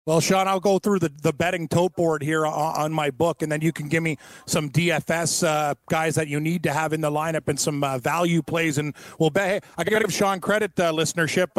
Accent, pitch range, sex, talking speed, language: American, 160-185 Hz, male, 260 wpm, English